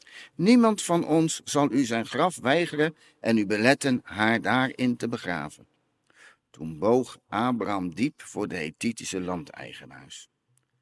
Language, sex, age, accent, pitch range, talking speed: Dutch, male, 50-69, Dutch, 110-145 Hz, 130 wpm